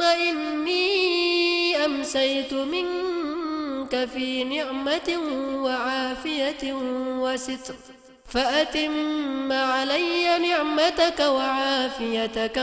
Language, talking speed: Indonesian, 50 wpm